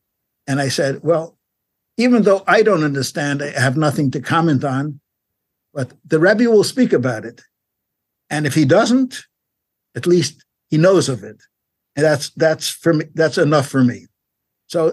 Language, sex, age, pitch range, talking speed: English, male, 60-79, 135-180 Hz, 170 wpm